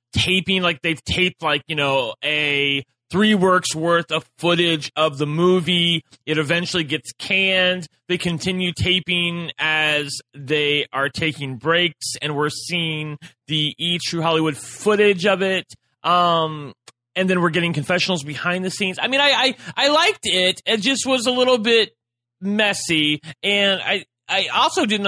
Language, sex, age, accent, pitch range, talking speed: English, male, 30-49, American, 155-200 Hz, 160 wpm